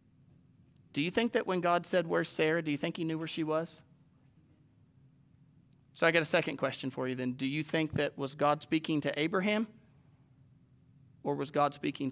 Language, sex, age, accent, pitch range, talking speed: English, male, 30-49, American, 140-230 Hz, 195 wpm